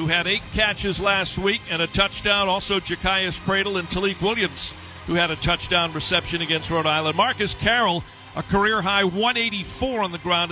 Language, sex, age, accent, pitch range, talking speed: English, male, 50-69, American, 170-200 Hz, 175 wpm